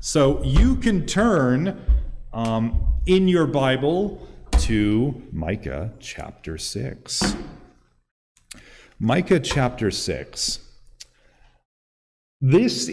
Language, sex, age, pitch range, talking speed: English, male, 40-59, 105-155 Hz, 75 wpm